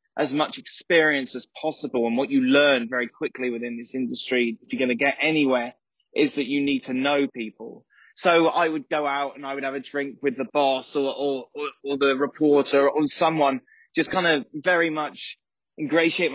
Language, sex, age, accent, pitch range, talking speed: English, male, 20-39, British, 135-160 Hz, 200 wpm